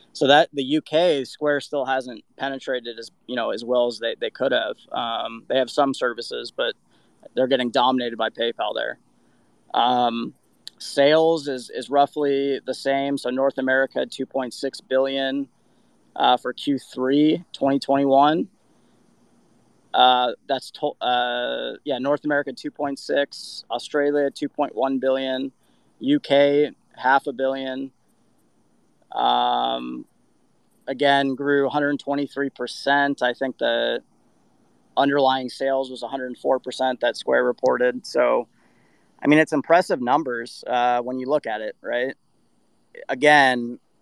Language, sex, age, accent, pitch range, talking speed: English, male, 20-39, American, 125-140 Hz, 120 wpm